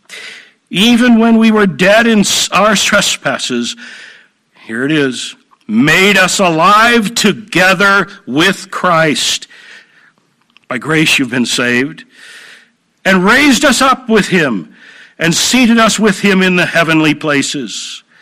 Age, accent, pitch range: 60-79, American, 155-230 Hz